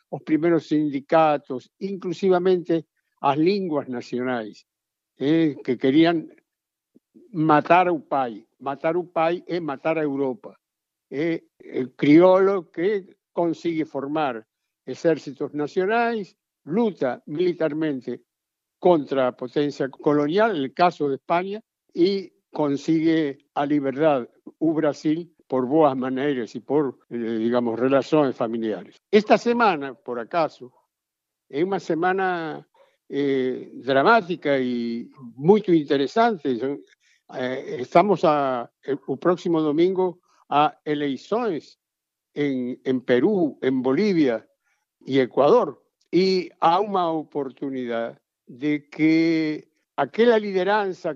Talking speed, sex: 100 wpm, male